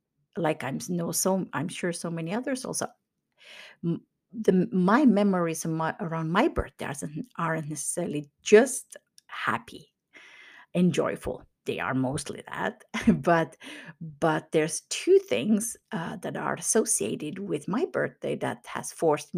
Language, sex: English, female